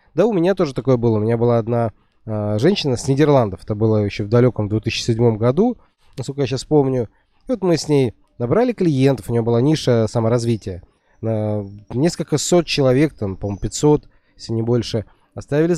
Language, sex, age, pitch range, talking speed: Russian, male, 20-39, 115-155 Hz, 175 wpm